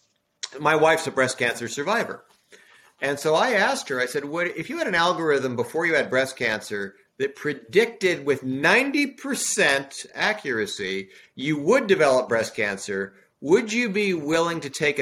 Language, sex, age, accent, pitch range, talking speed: English, male, 50-69, American, 130-190 Hz, 155 wpm